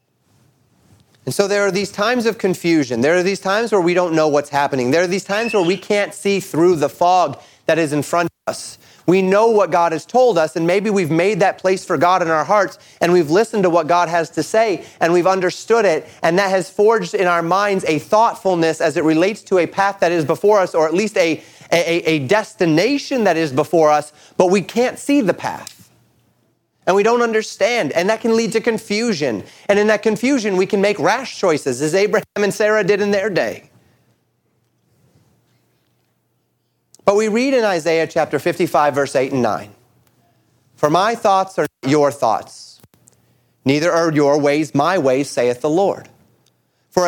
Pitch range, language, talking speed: 155-205 Hz, English, 200 wpm